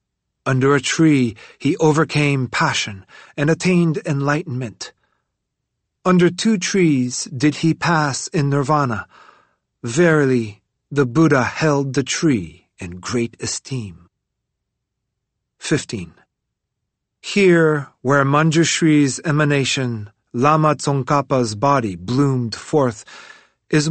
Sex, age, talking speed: male, 40-59, 95 wpm